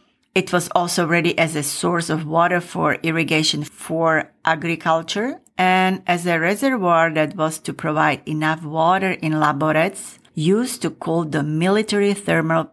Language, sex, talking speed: English, female, 145 wpm